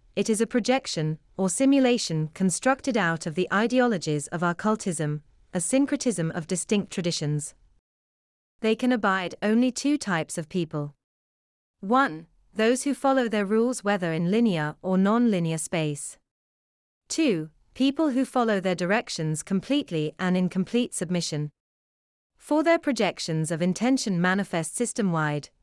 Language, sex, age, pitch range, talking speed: English, female, 30-49, 160-235 Hz, 135 wpm